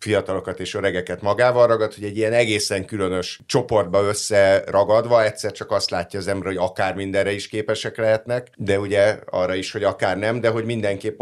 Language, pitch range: Hungarian, 90-110 Hz